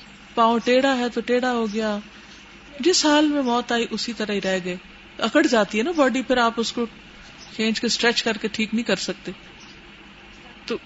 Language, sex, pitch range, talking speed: Urdu, female, 195-265 Hz, 200 wpm